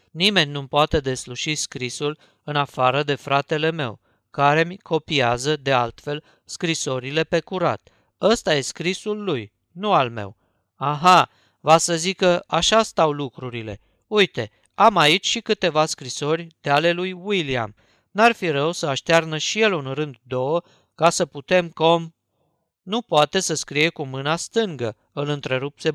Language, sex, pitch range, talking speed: Romanian, male, 135-175 Hz, 150 wpm